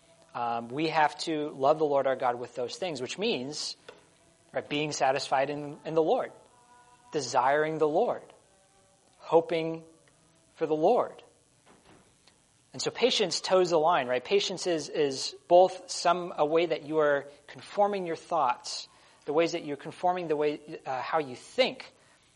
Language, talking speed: English, 160 wpm